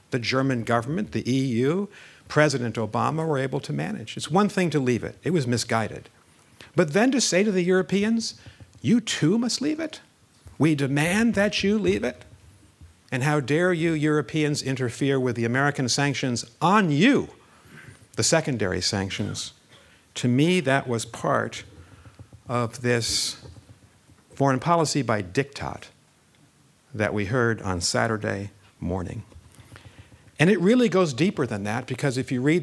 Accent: American